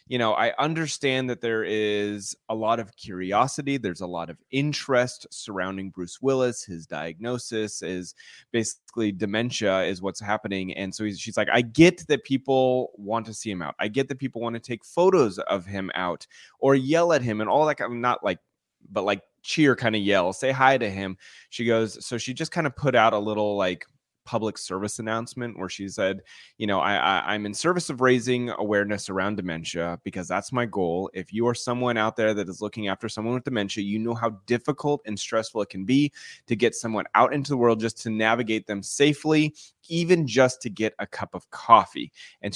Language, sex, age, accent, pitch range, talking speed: English, male, 20-39, American, 100-130 Hz, 210 wpm